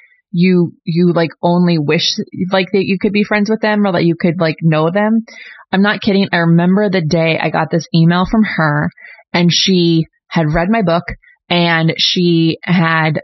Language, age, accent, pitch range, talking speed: English, 20-39, American, 170-205 Hz, 190 wpm